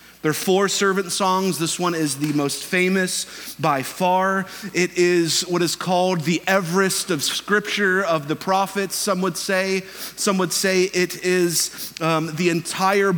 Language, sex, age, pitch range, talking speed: English, male, 30-49, 150-180 Hz, 165 wpm